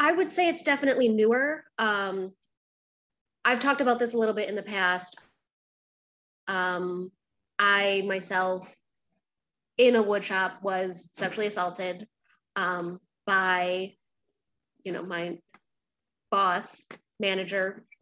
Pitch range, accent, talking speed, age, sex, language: 185-220 Hz, American, 115 wpm, 20-39, female, English